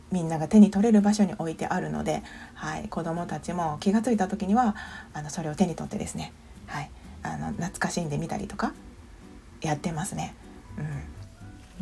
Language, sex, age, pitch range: Japanese, female, 40-59, 165-230 Hz